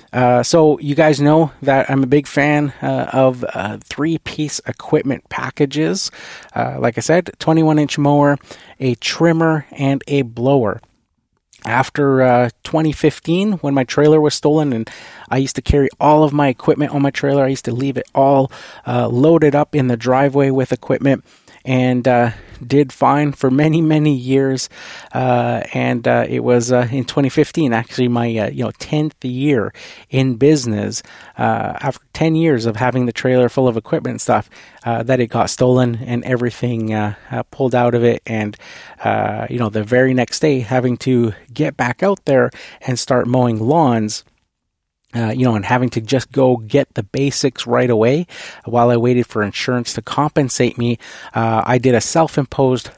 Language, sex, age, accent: English, male, 30-49, American